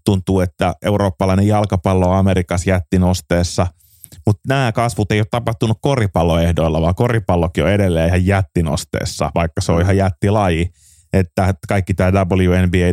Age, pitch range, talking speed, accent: 30-49, 85-100 Hz, 135 wpm, native